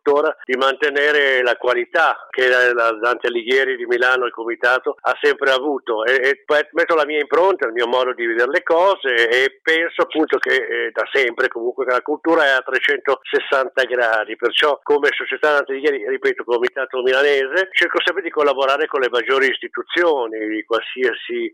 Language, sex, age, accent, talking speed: Italian, male, 50-69, native, 170 wpm